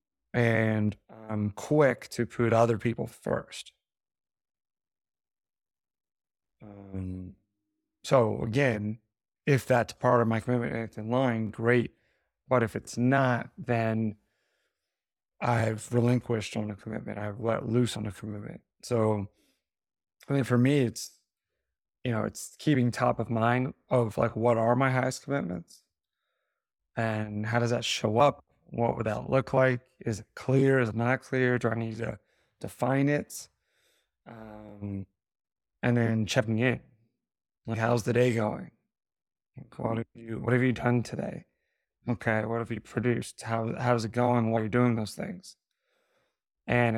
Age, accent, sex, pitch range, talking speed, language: 20-39, American, male, 110-125 Hz, 145 wpm, English